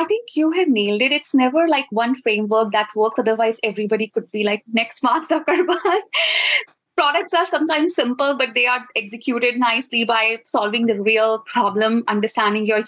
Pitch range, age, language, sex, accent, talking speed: 230-295 Hz, 20-39, English, female, Indian, 175 wpm